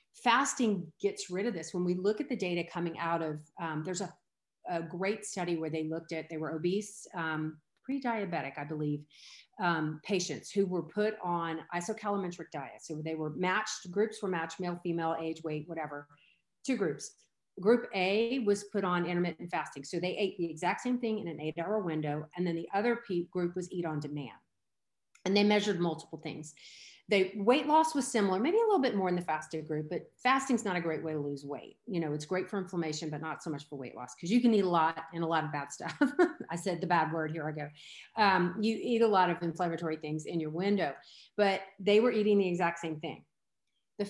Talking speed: 225 wpm